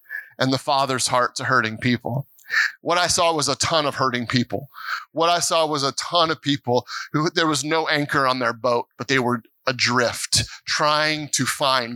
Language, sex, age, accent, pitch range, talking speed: English, male, 30-49, American, 115-170 Hz, 195 wpm